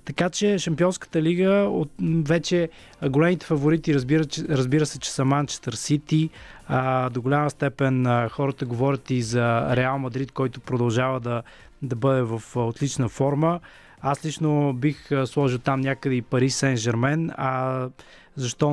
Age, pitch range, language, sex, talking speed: 20-39, 130-155 Hz, Bulgarian, male, 140 wpm